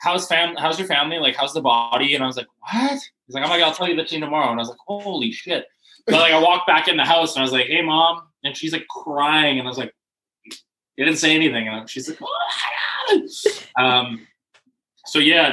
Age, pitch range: 20-39, 120-160 Hz